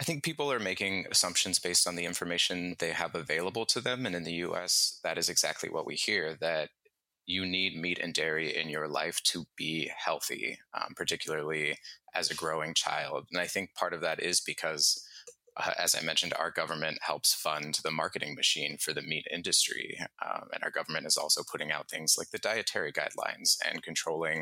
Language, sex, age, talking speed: English, male, 30-49, 200 wpm